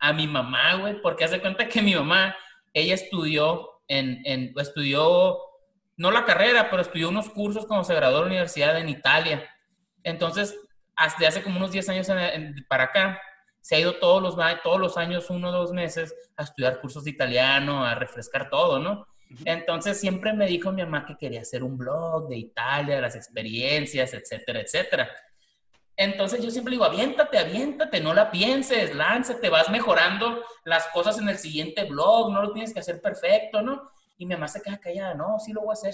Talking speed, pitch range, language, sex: 195 wpm, 160-225 Hz, Spanish, male